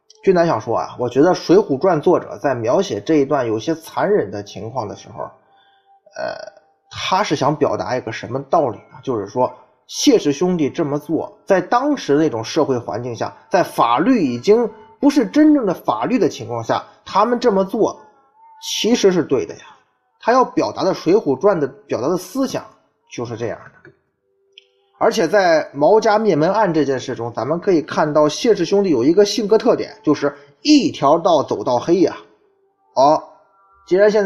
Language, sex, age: Chinese, male, 20-39